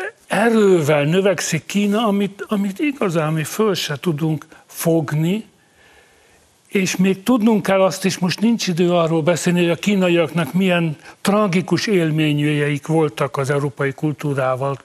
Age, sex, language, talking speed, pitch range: 60-79, male, Hungarian, 130 wpm, 150-190 Hz